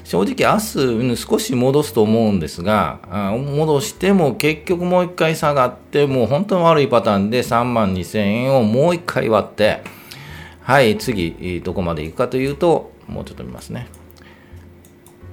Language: Japanese